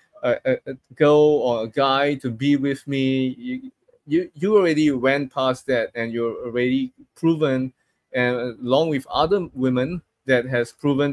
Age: 20-39